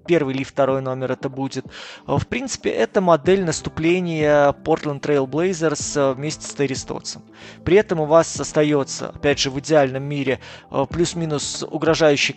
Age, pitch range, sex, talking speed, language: 20-39, 140-175 Hz, male, 140 wpm, Russian